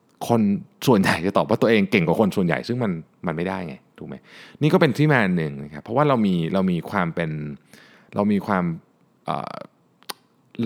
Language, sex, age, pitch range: Thai, male, 20-39, 90-130 Hz